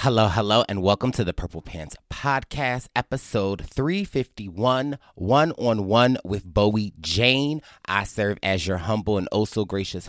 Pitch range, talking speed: 95-125 Hz, 130 wpm